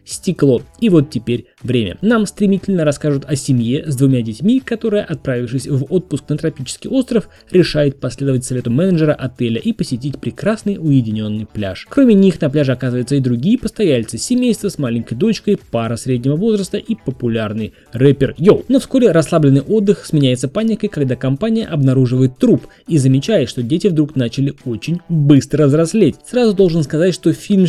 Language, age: Russian, 20-39